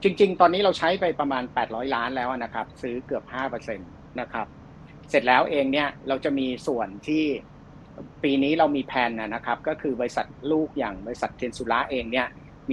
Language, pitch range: Thai, 120-155 Hz